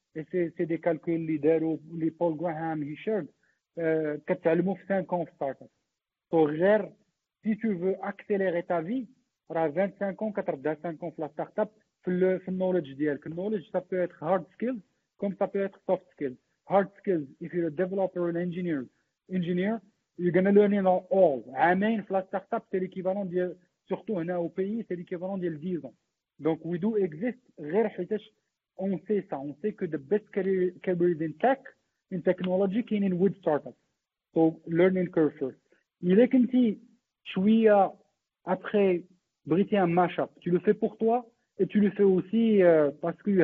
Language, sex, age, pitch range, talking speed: Arabic, male, 50-69, 170-210 Hz, 185 wpm